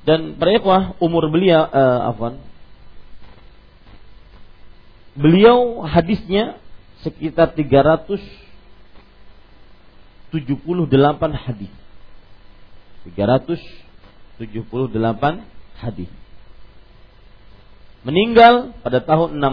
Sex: male